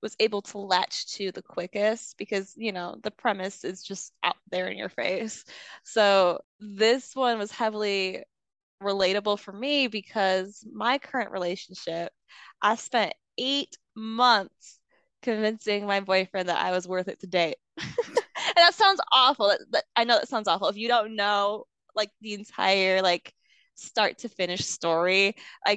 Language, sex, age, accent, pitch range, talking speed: English, female, 20-39, American, 180-215 Hz, 155 wpm